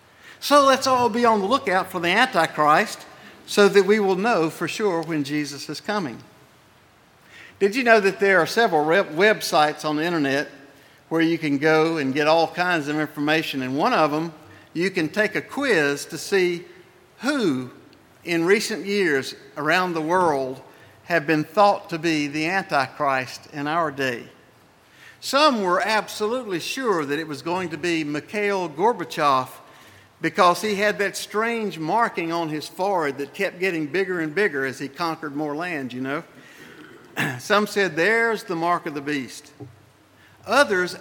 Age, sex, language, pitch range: 60-79, male, English, 155-210 Hz